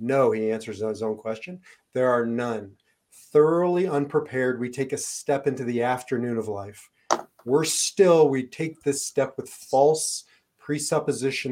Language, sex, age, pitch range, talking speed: English, male, 40-59, 115-145 Hz, 150 wpm